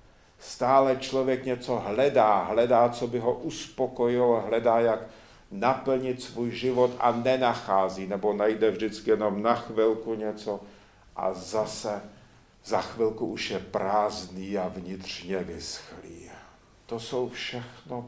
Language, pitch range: Czech, 105-125 Hz